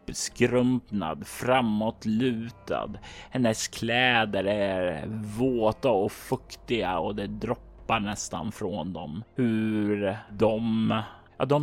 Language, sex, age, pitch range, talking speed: Swedish, male, 30-49, 105-120 Hz, 95 wpm